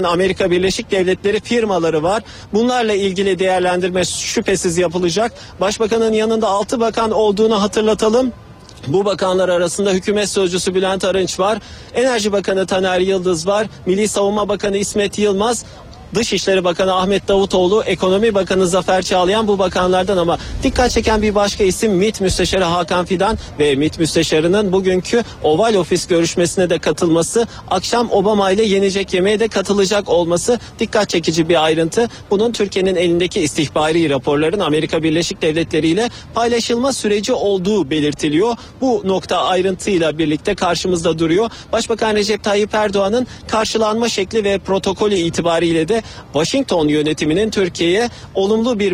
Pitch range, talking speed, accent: 180-215 Hz, 135 wpm, native